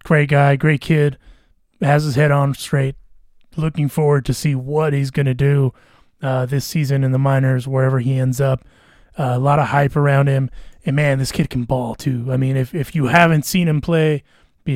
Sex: male